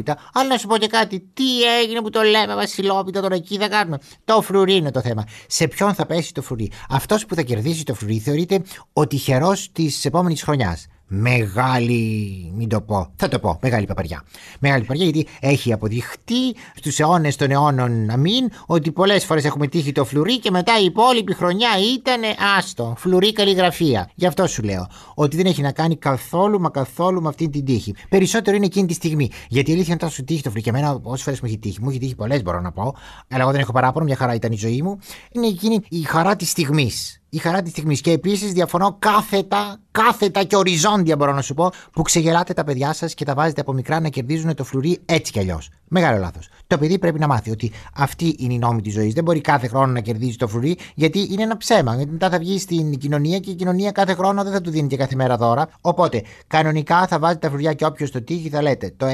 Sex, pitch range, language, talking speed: male, 130-185 Hz, Greek, 230 wpm